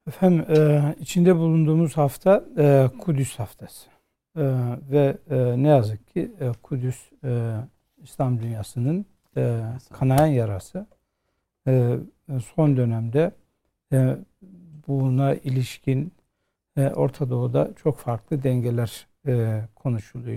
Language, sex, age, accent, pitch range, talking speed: Turkish, male, 60-79, native, 125-150 Hz, 75 wpm